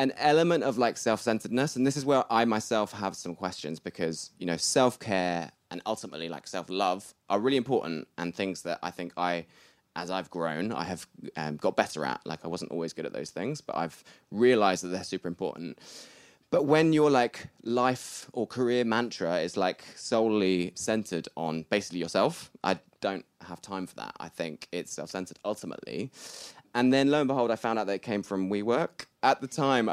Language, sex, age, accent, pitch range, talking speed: English, male, 20-39, British, 95-125 Hz, 215 wpm